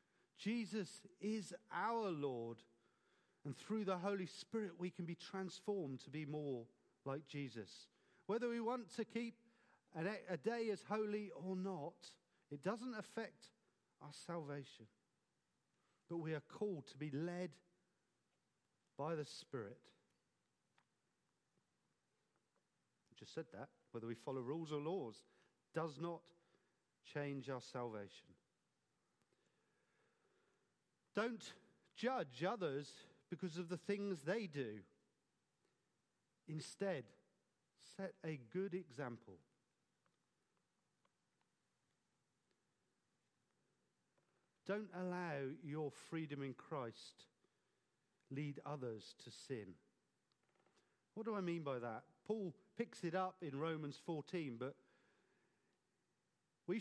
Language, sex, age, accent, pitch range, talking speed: English, male, 40-59, British, 145-200 Hz, 105 wpm